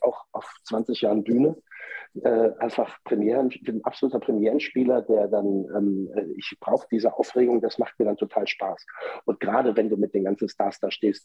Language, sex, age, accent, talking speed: German, male, 40-59, German, 190 wpm